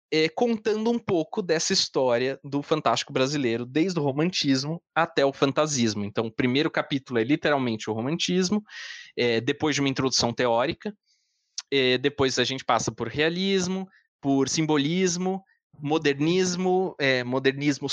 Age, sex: 20-39, male